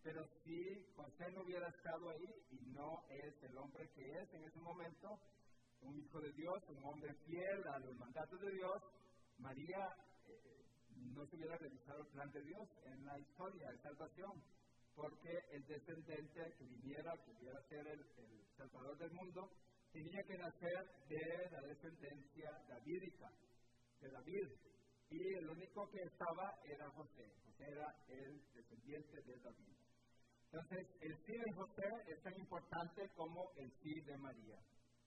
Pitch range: 130-170 Hz